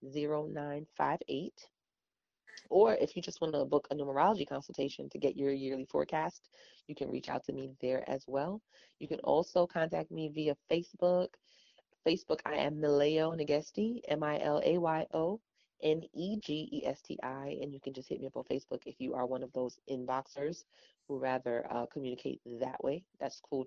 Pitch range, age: 135-165 Hz, 30-49